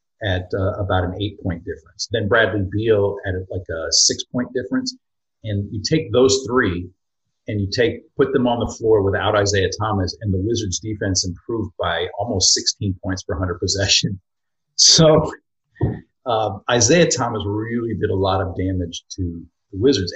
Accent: American